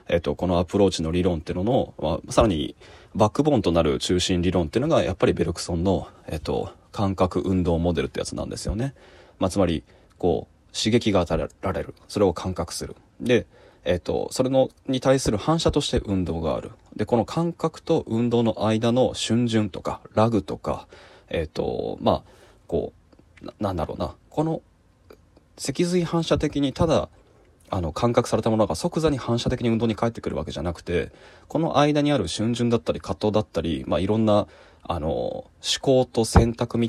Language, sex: Japanese, male